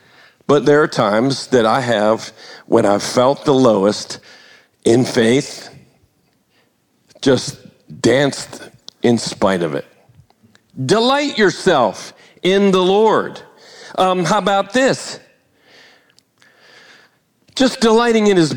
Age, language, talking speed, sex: 50-69, English, 105 wpm, male